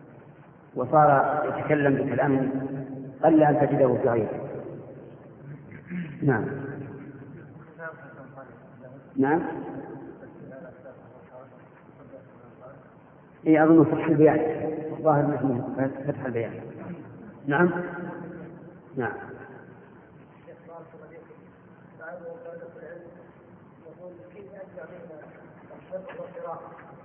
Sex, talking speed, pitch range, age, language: male, 45 wpm, 140-165 Hz, 50-69, Arabic